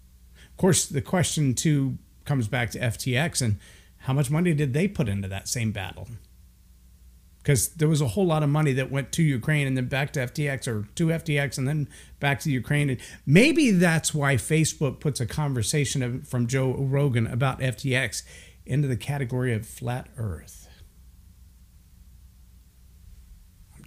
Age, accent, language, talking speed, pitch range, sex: 50-69, American, English, 165 wpm, 85-145 Hz, male